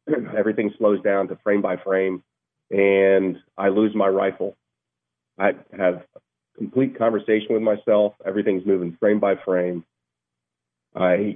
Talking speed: 130 wpm